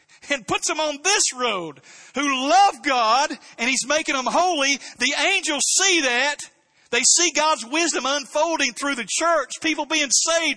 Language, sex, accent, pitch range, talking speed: English, male, American, 200-300 Hz, 165 wpm